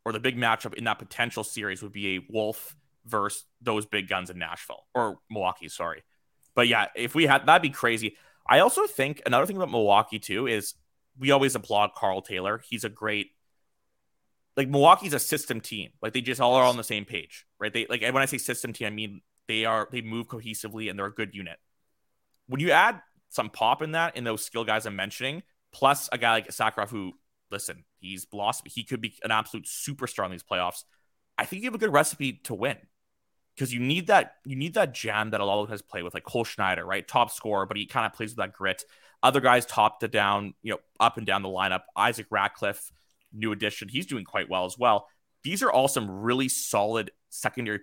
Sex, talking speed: male, 220 wpm